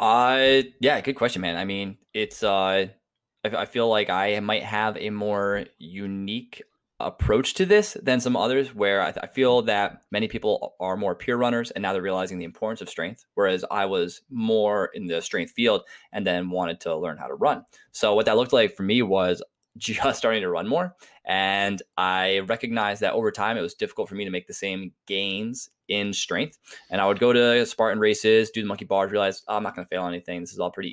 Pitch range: 95-120 Hz